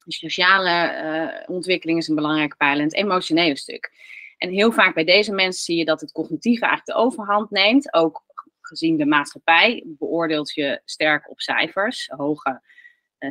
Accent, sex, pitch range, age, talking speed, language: Dutch, female, 155-255 Hz, 30-49, 170 wpm, Dutch